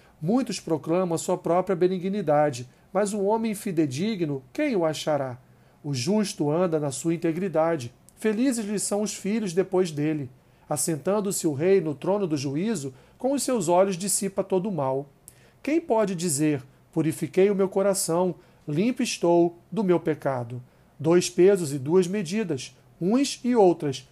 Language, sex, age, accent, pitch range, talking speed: Portuguese, male, 40-59, Brazilian, 155-205 Hz, 155 wpm